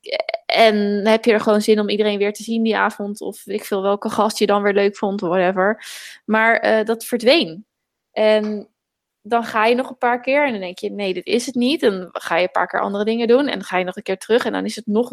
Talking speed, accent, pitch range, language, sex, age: 270 wpm, Dutch, 200-235 Hz, Dutch, female, 20-39